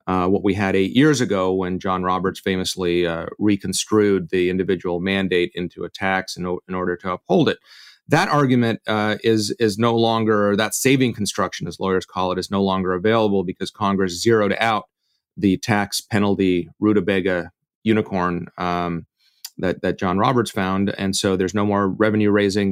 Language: English